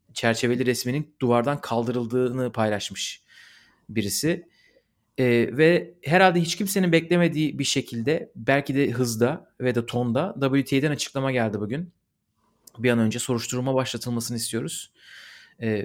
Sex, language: male, Turkish